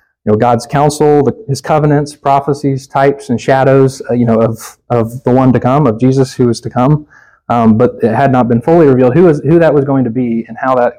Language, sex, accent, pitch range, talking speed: English, male, American, 115-135 Hz, 245 wpm